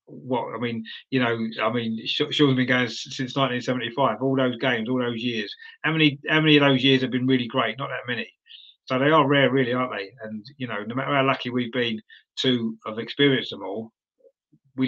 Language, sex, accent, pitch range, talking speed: English, male, British, 120-140 Hz, 220 wpm